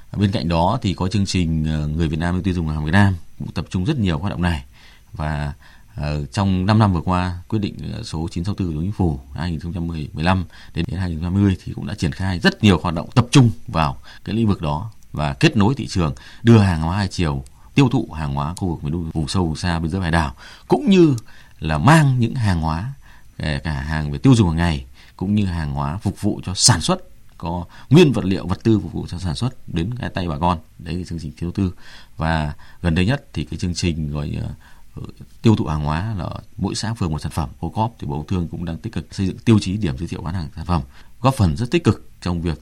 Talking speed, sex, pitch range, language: 250 wpm, male, 80-105 Hz, Vietnamese